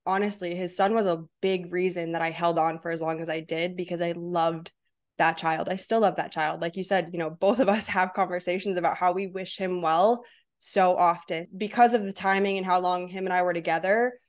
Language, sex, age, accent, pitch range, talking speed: English, female, 20-39, American, 175-210 Hz, 240 wpm